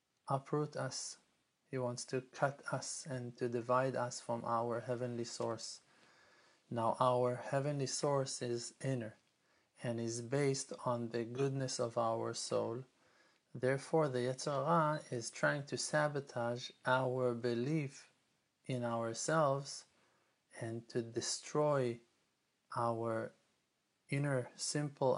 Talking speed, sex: 110 wpm, male